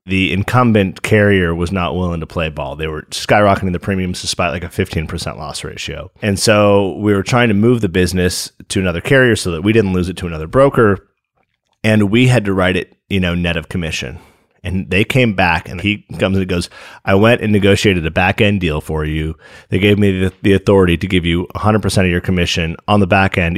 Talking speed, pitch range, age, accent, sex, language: 230 wpm, 90-110 Hz, 30-49, American, male, English